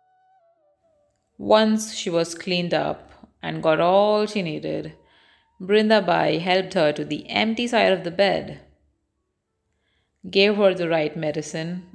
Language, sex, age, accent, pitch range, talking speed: Hindi, female, 30-49, native, 155-235 Hz, 130 wpm